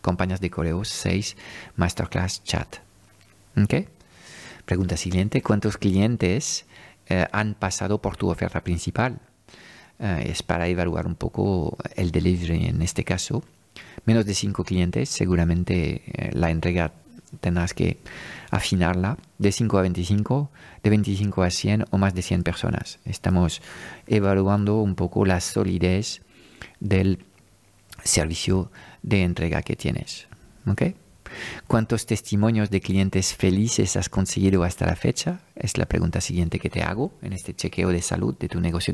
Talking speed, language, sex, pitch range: 140 wpm, Spanish, male, 90-105 Hz